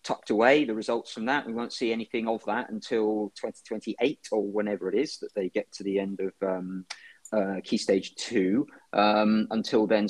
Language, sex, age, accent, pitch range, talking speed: English, male, 40-59, British, 110-135 Hz, 195 wpm